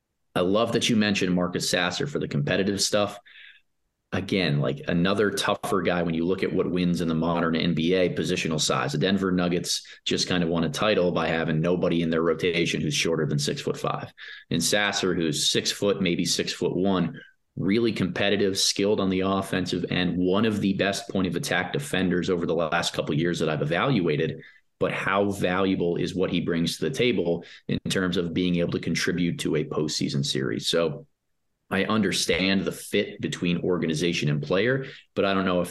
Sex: male